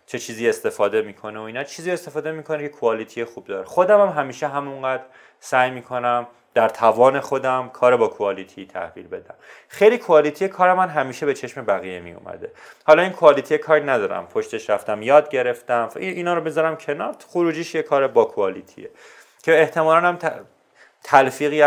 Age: 30-49